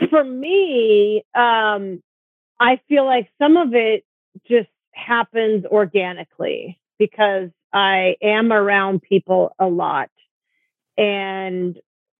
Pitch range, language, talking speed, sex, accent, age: 190-230 Hz, English, 100 wpm, female, American, 40-59